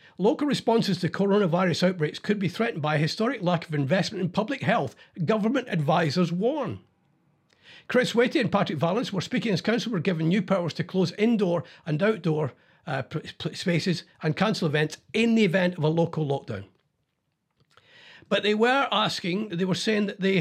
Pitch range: 155-200 Hz